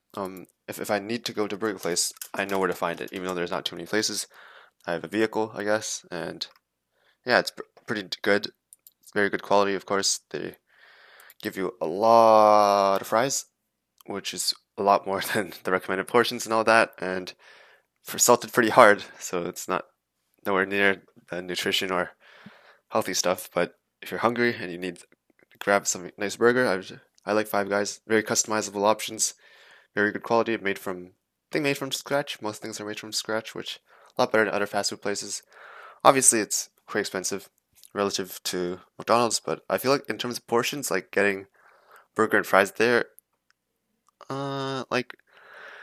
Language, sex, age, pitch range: English, male, 20-39, 95-115 Hz